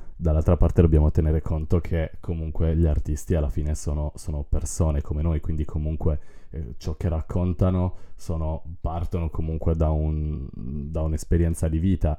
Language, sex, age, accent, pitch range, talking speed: Italian, male, 30-49, native, 75-85 Hz, 155 wpm